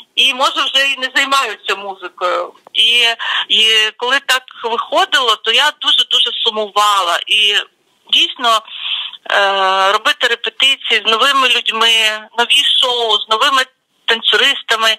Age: 40-59